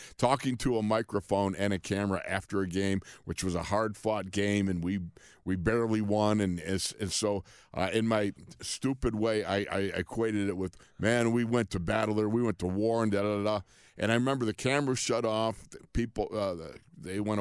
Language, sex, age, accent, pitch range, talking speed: English, male, 50-69, American, 90-110 Hz, 210 wpm